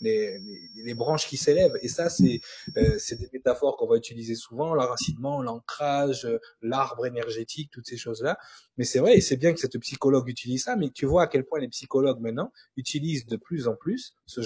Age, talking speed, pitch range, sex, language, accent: 20-39, 210 wpm, 120-155 Hz, male, French, French